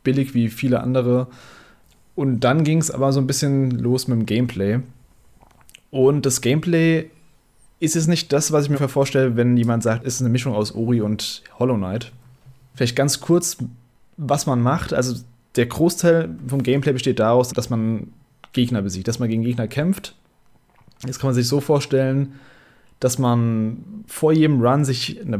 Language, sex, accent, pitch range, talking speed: German, male, German, 115-140 Hz, 175 wpm